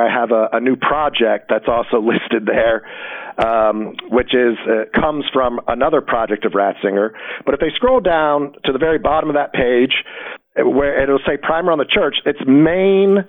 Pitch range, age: 140-195 Hz, 40-59